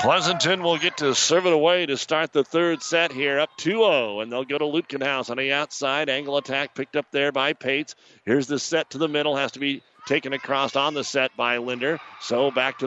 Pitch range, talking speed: 130-160 Hz, 230 wpm